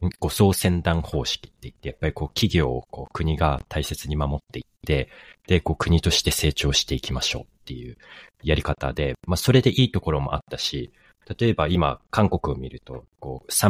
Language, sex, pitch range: Japanese, male, 70-90 Hz